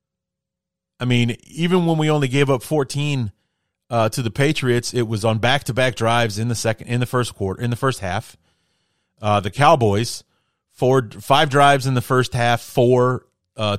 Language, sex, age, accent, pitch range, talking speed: English, male, 30-49, American, 105-135 Hz, 180 wpm